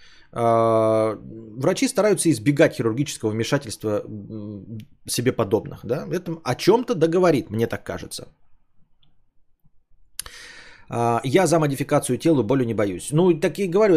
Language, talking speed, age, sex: Bulgarian, 115 wpm, 20-39, male